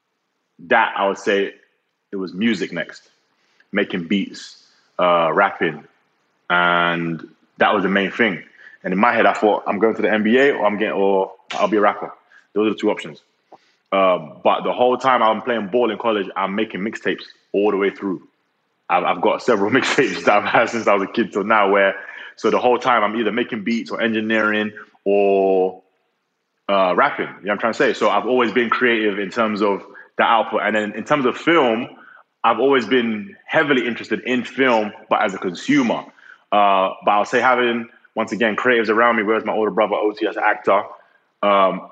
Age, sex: 20-39, male